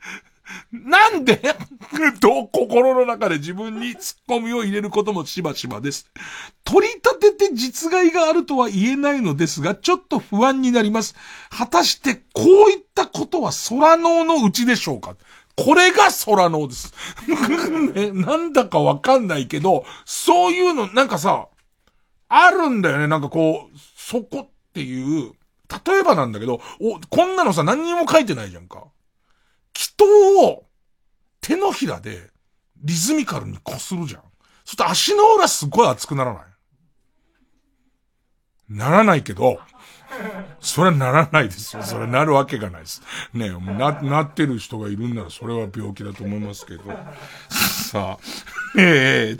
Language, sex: Japanese, male